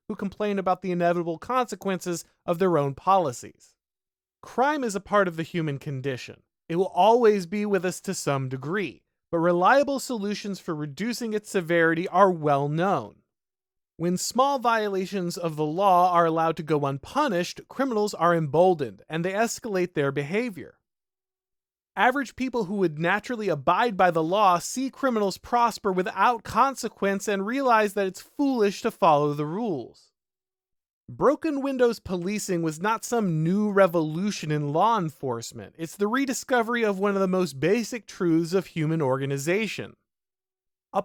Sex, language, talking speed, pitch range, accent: male, English, 150 wpm, 165-230 Hz, American